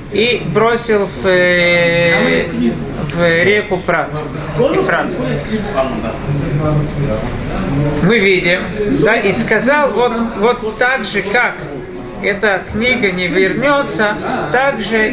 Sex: male